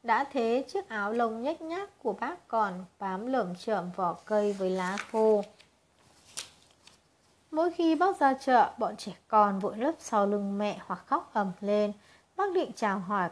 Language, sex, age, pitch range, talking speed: Vietnamese, female, 20-39, 205-255 Hz, 175 wpm